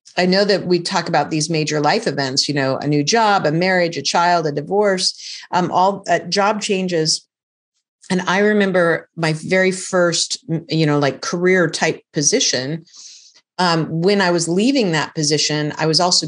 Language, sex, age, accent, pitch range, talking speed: English, female, 40-59, American, 150-185 Hz, 175 wpm